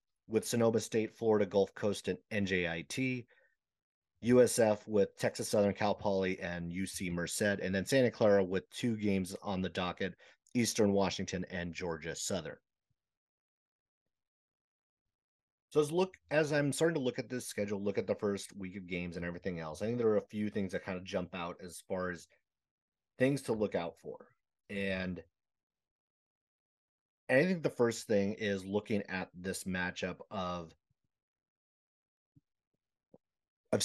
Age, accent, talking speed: 30-49, American, 155 wpm